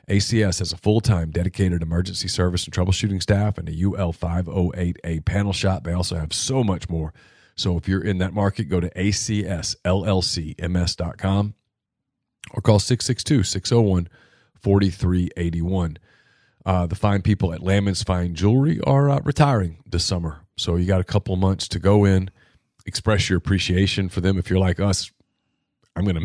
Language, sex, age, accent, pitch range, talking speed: English, male, 40-59, American, 85-100 Hz, 160 wpm